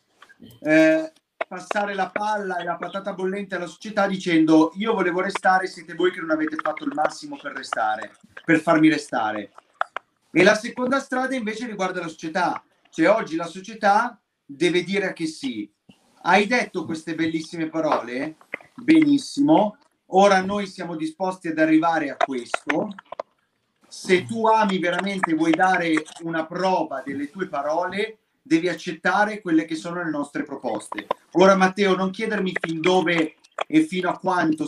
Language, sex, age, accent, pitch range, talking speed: Italian, male, 40-59, native, 165-215 Hz, 150 wpm